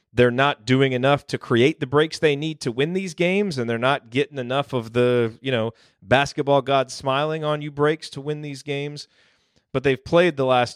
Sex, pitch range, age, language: male, 105-130 Hz, 30-49, English